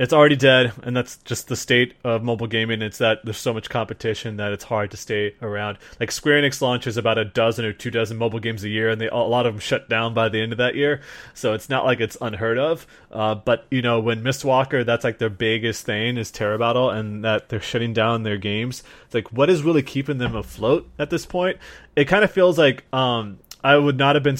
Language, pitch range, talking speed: English, 110-130 Hz, 250 wpm